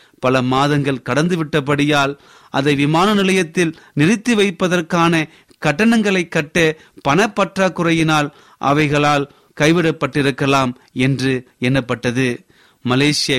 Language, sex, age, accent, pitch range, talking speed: Tamil, male, 30-49, native, 140-180 Hz, 75 wpm